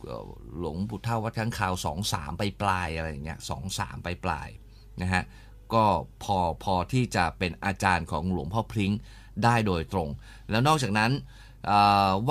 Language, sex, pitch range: Thai, male, 95-115 Hz